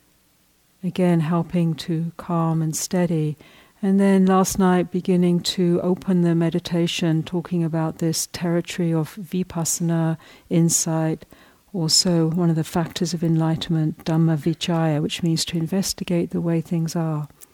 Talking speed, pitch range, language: 135 wpm, 160-180 Hz, English